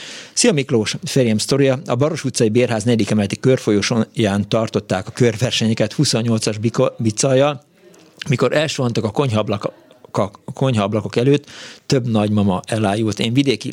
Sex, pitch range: male, 105-125 Hz